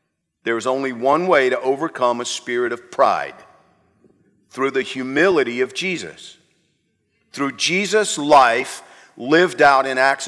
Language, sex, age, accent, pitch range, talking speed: English, male, 50-69, American, 125-165 Hz, 135 wpm